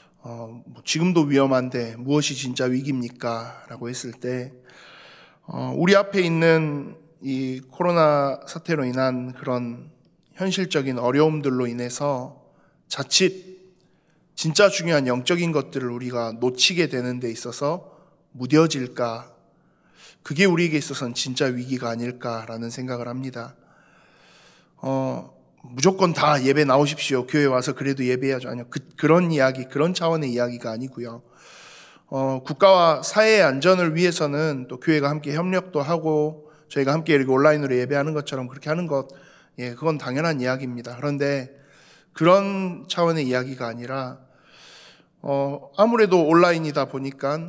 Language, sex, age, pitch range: Korean, male, 20-39, 125-165 Hz